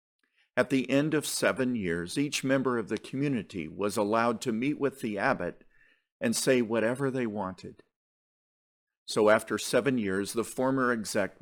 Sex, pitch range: male, 95-135 Hz